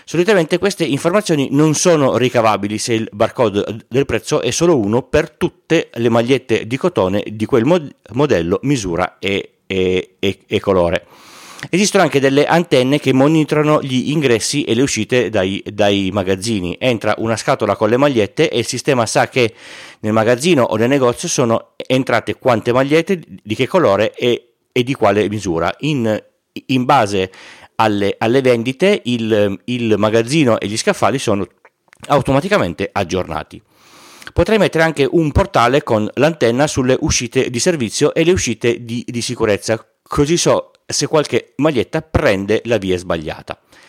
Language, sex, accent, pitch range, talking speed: Italian, male, native, 110-145 Hz, 150 wpm